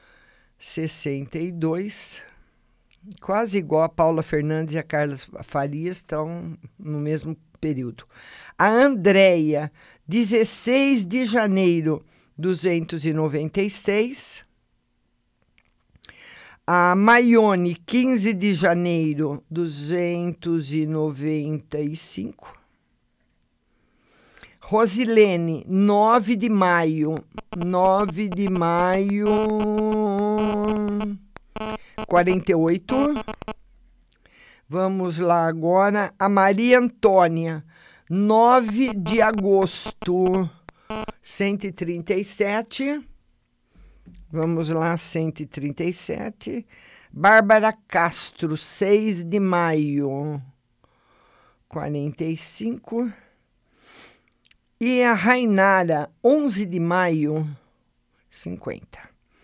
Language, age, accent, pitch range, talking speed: Portuguese, 50-69, Brazilian, 160-215 Hz, 60 wpm